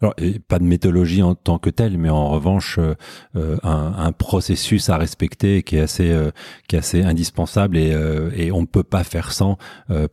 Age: 40-59